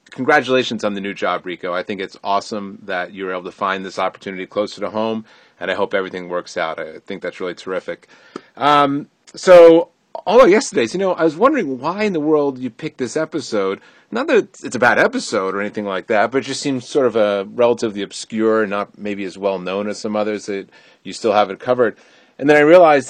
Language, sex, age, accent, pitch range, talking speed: English, male, 30-49, American, 100-130 Hz, 220 wpm